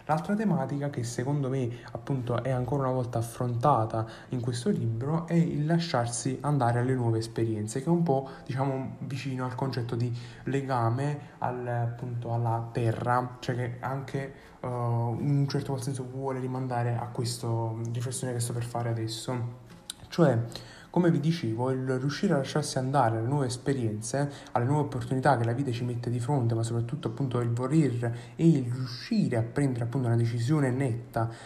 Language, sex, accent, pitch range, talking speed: Italian, male, native, 120-145 Hz, 170 wpm